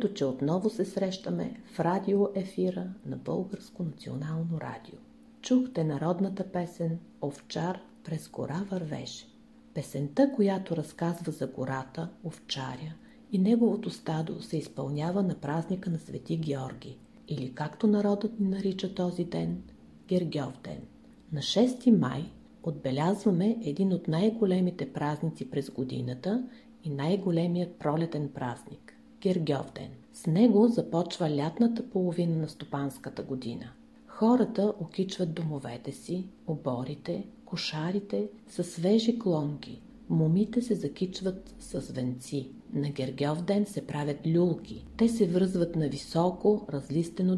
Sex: female